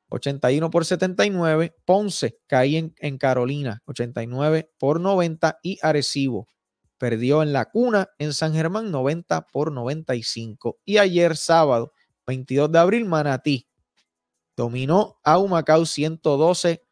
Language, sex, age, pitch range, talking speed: Spanish, male, 20-39, 145-185 Hz, 120 wpm